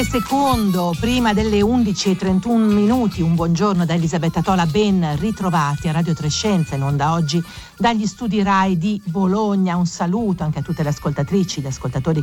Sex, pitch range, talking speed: female, 155-195 Hz, 160 wpm